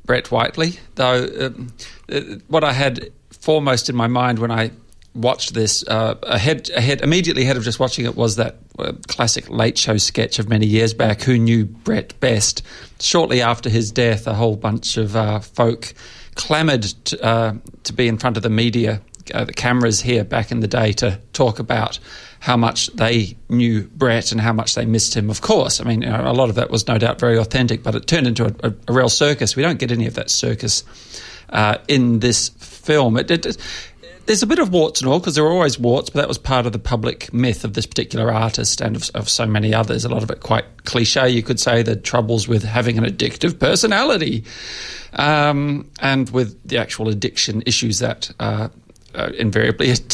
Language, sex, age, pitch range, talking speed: English, male, 40-59, 110-125 Hz, 200 wpm